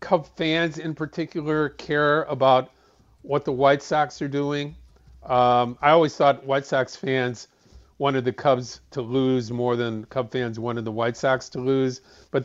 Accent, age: American, 50-69